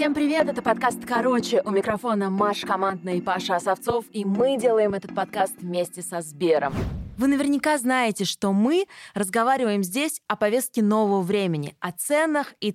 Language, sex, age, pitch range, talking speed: Russian, female, 20-39, 185-250 Hz, 160 wpm